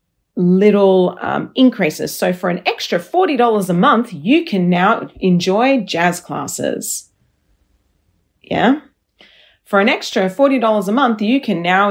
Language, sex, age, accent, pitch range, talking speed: English, female, 40-59, Australian, 175-235 Hz, 130 wpm